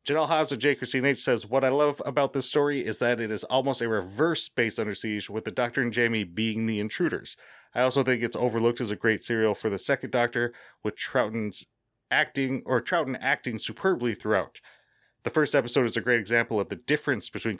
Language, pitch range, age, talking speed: English, 105-135 Hz, 30-49, 205 wpm